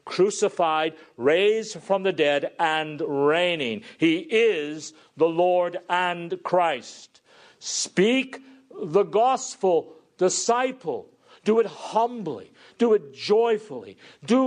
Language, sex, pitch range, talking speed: English, male, 150-225 Hz, 100 wpm